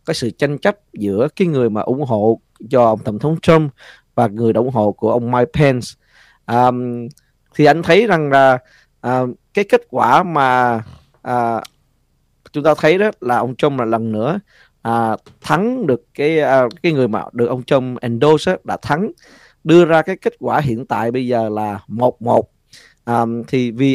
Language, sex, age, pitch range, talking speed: Vietnamese, male, 20-39, 115-150 Hz, 185 wpm